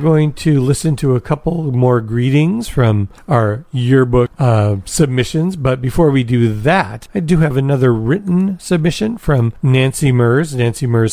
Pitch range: 120-160 Hz